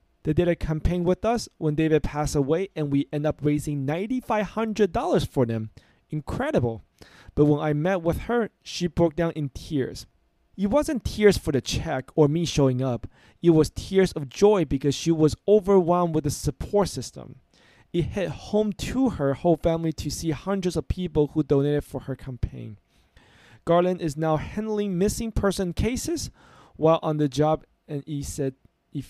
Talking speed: 175 wpm